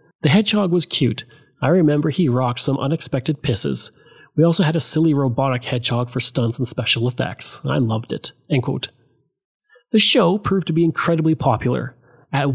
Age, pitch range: 30-49, 125-160 Hz